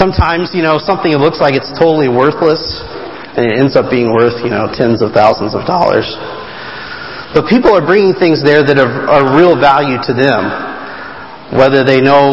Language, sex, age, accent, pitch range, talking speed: English, male, 40-59, American, 125-160 Hz, 185 wpm